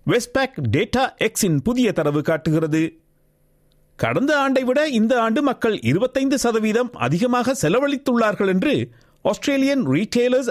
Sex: male